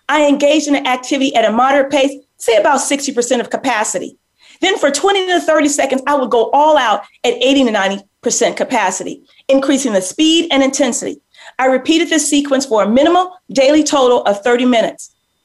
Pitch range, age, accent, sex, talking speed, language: 255-320 Hz, 40-59, American, female, 185 wpm, English